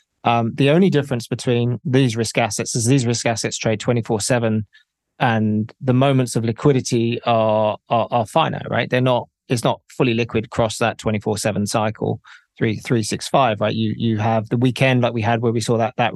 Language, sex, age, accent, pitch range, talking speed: English, male, 20-39, British, 115-130 Hz, 210 wpm